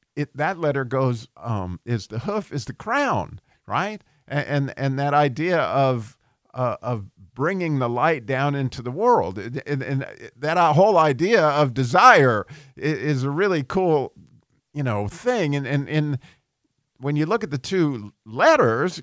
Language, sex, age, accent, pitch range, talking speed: English, male, 50-69, American, 125-155 Hz, 165 wpm